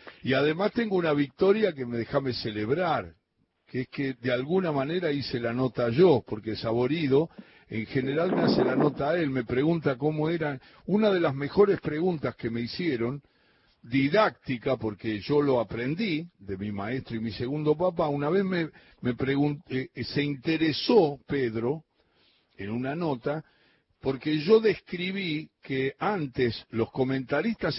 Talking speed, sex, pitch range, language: 155 wpm, male, 125-185 Hz, Spanish